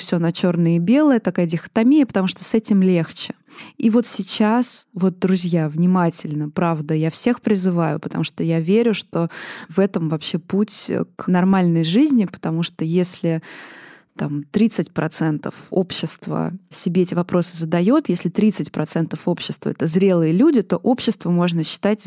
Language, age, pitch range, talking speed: Russian, 20-39, 170-205 Hz, 145 wpm